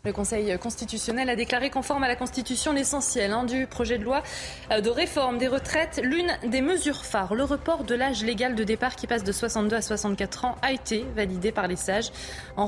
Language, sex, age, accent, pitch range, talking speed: French, female, 20-39, French, 215-275 Hz, 205 wpm